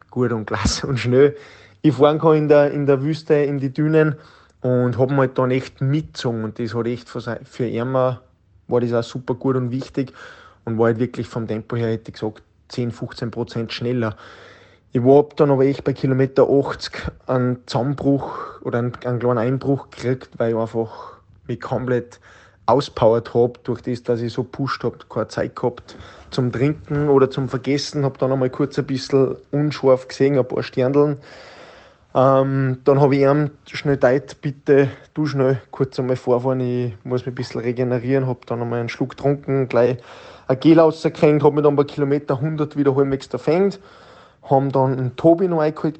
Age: 20-39